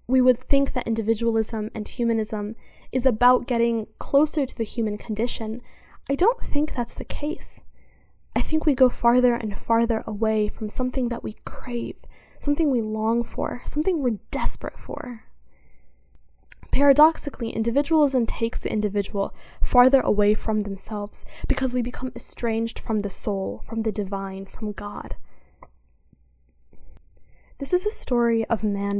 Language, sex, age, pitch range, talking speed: English, female, 10-29, 205-260 Hz, 145 wpm